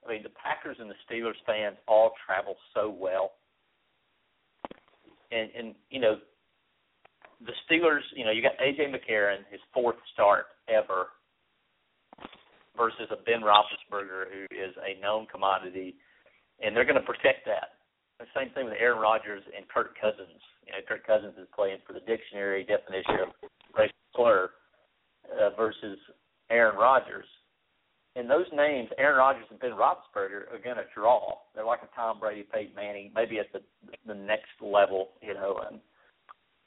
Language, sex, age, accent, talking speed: English, male, 50-69, American, 160 wpm